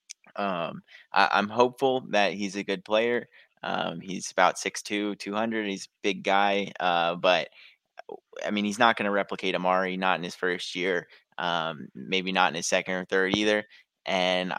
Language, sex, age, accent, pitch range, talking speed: English, male, 20-39, American, 90-100 Hz, 175 wpm